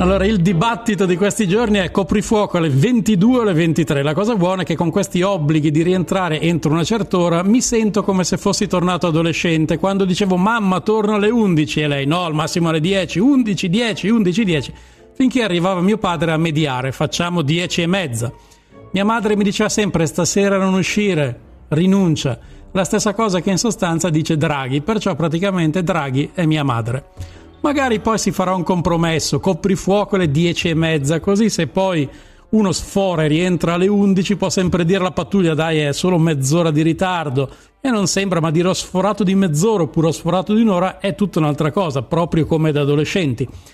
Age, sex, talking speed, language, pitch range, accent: 40-59, male, 185 wpm, Italian, 155-200 Hz, native